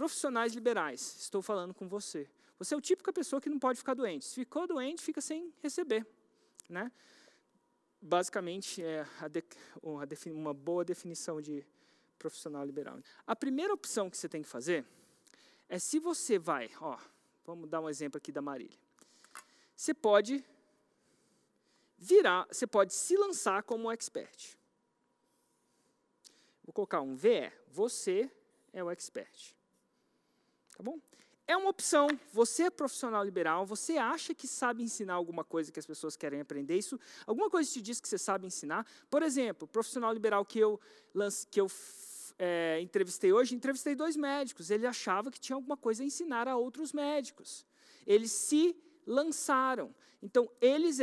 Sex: male